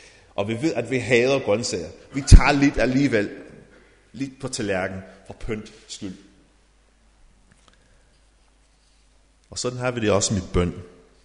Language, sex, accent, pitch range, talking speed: Danish, male, native, 100-145 Hz, 135 wpm